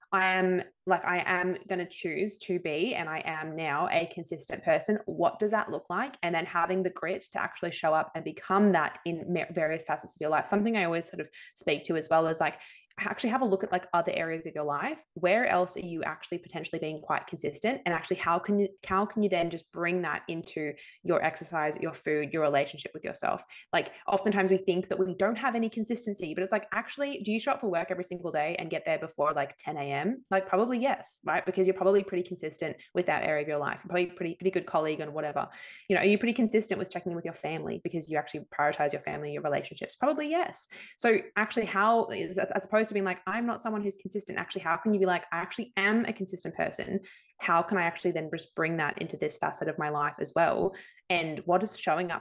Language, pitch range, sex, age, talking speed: English, 165-195 Hz, female, 20-39, 245 wpm